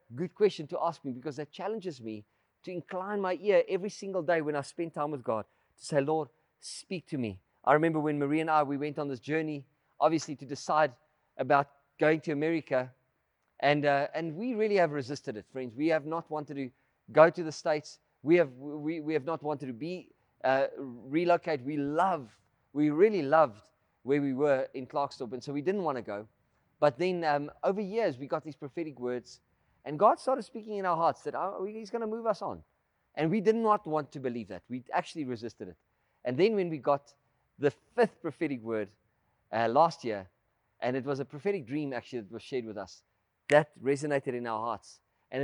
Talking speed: 210 wpm